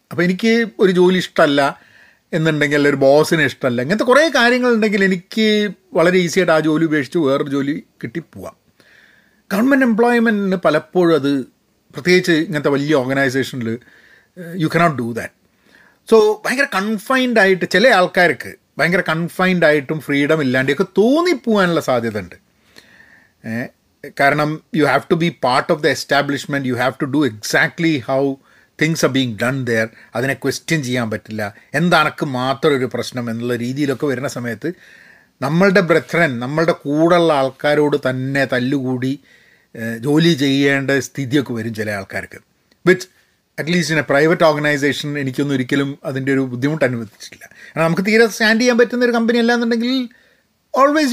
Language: Malayalam